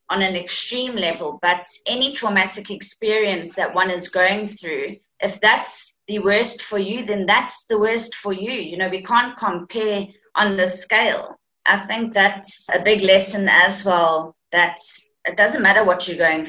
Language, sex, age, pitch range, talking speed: English, female, 30-49, 190-225 Hz, 175 wpm